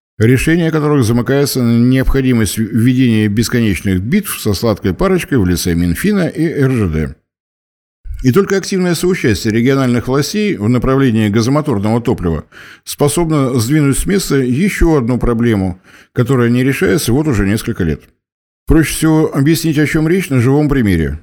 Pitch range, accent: 105-145 Hz, native